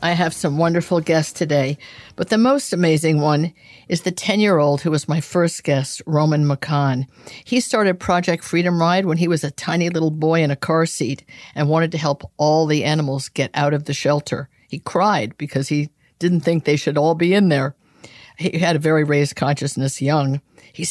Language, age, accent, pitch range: English, 50-69, American, 145-175 Hz